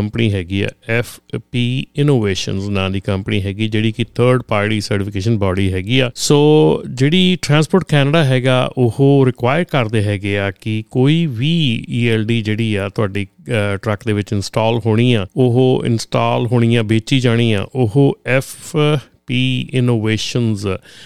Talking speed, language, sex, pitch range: 150 wpm, Punjabi, male, 110-130 Hz